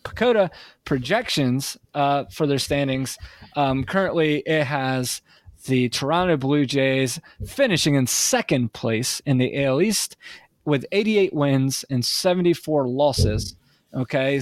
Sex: male